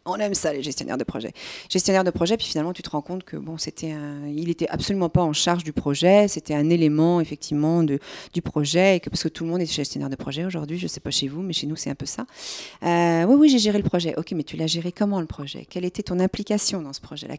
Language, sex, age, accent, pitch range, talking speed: French, female, 40-59, French, 160-205 Hz, 280 wpm